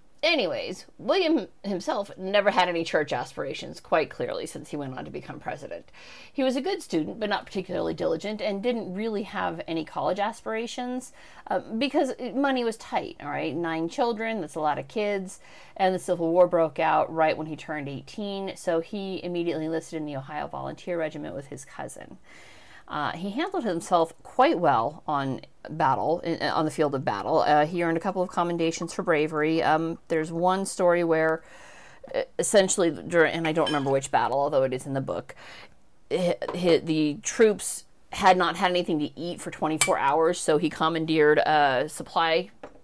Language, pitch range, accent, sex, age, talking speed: English, 155-200 Hz, American, female, 40-59, 175 wpm